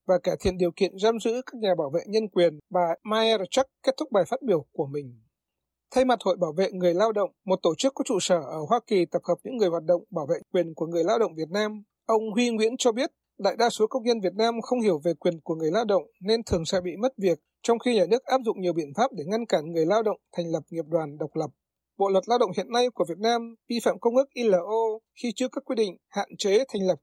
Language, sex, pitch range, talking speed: Vietnamese, male, 180-240 Hz, 275 wpm